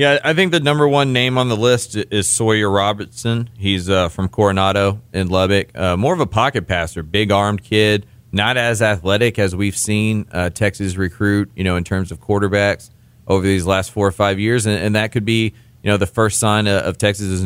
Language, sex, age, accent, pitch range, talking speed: English, male, 40-59, American, 95-115 Hz, 215 wpm